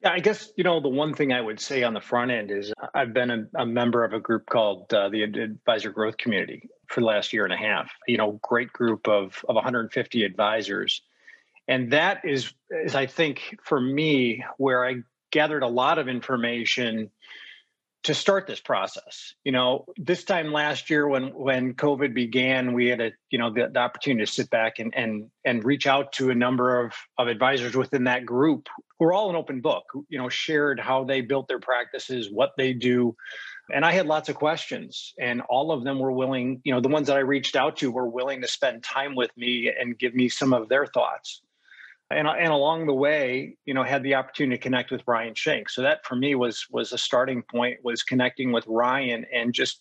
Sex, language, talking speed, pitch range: male, English, 220 wpm, 120-135 Hz